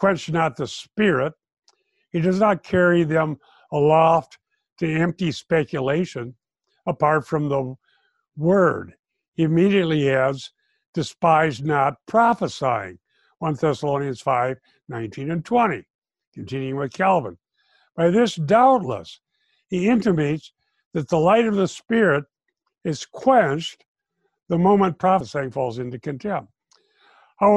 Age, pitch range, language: 60-79, 155-220 Hz, English